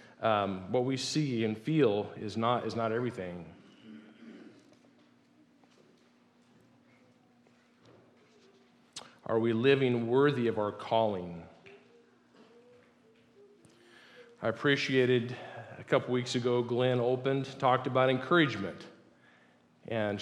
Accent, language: American, English